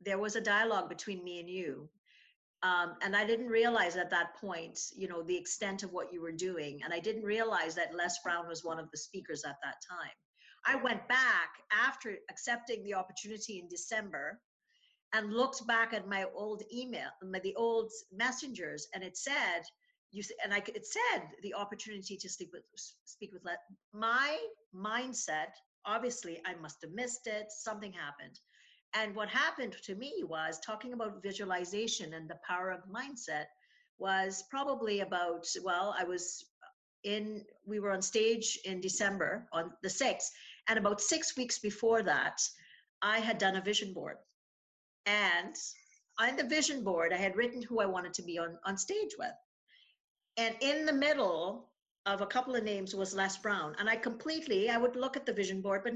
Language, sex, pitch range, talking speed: English, female, 185-235 Hz, 180 wpm